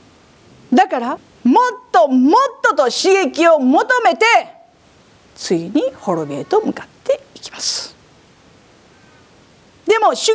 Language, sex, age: Japanese, female, 50-69